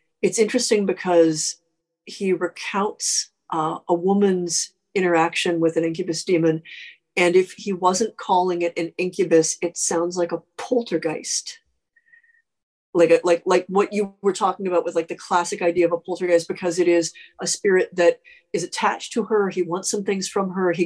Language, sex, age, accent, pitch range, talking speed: English, female, 40-59, American, 170-200 Hz, 175 wpm